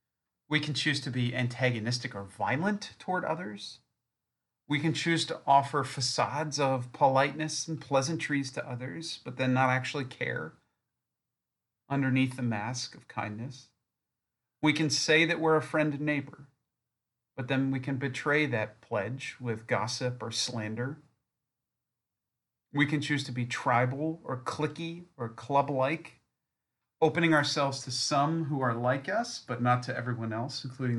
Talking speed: 145 wpm